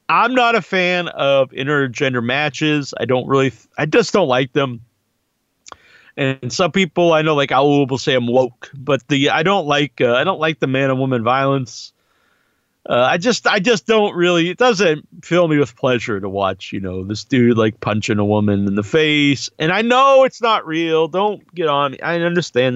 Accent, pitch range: American, 130-180 Hz